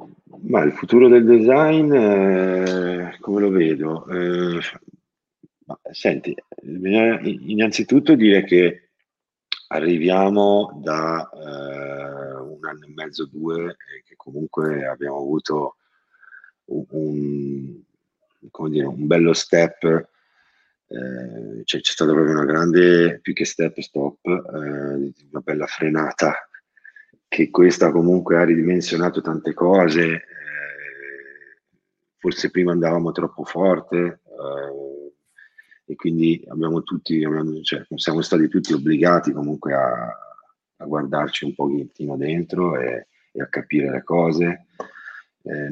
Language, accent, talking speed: Italian, native, 115 wpm